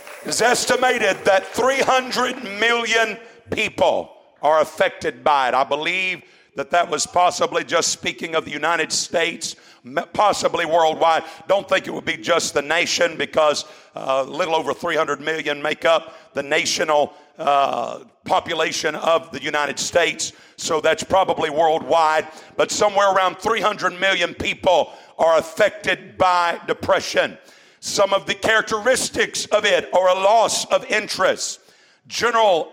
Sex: male